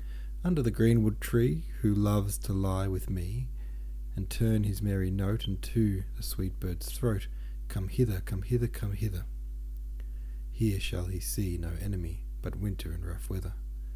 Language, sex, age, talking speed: English, male, 40-59, 160 wpm